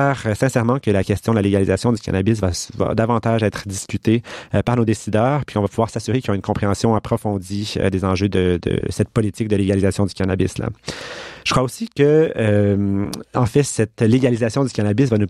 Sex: male